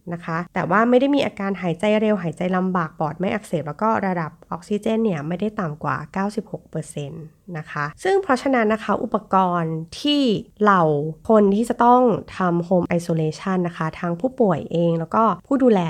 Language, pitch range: Thai, 165-230 Hz